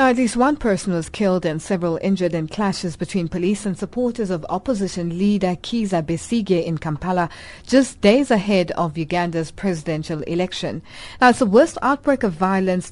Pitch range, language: 175-235 Hz, English